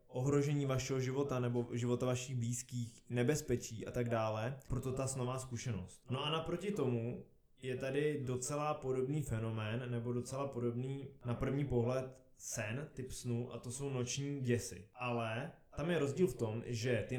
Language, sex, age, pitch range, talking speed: Czech, male, 20-39, 115-135 Hz, 160 wpm